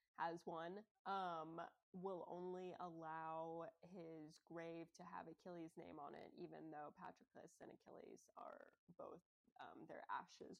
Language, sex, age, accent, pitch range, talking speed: English, female, 20-39, American, 165-185 Hz, 135 wpm